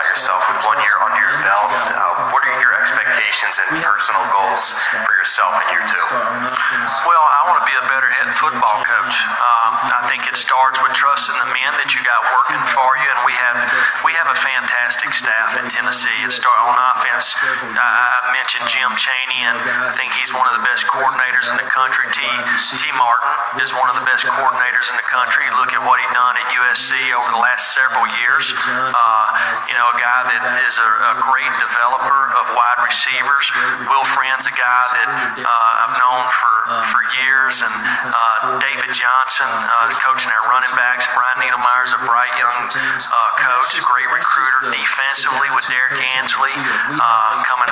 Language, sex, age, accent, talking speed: English, male, 40-59, American, 185 wpm